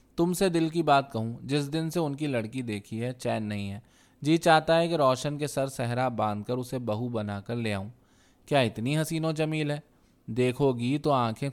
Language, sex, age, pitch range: Urdu, male, 20-39, 115-145 Hz